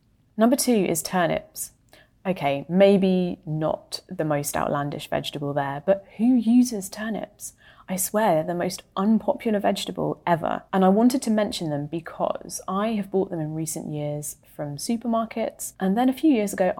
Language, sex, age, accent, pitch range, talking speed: English, female, 30-49, British, 145-195 Hz, 165 wpm